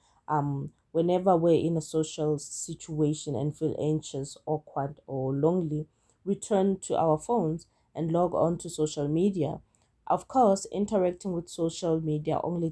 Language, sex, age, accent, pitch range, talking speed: English, female, 20-39, South African, 150-170 Hz, 145 wpm